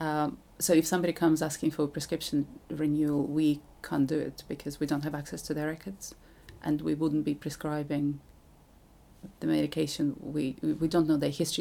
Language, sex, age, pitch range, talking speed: English, female, 30-49, 145-165 Hz, 180 wpm